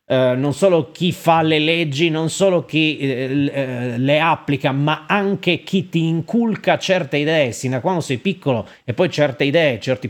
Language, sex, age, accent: Italian, male, 30-49, native